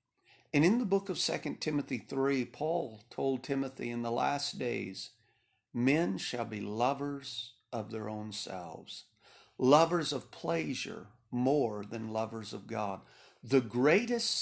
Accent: American